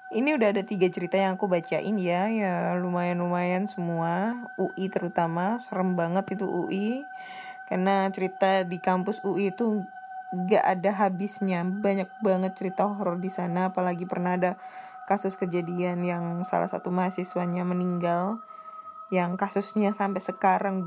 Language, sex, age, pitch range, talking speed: Indonesian, female, 10-29, 190-235 Hz, 135 wpm